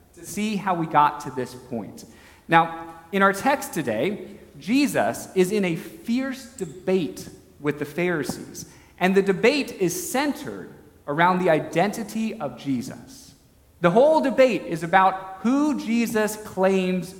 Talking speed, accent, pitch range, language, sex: 135 wpm, American, 165-230 Hz, English, male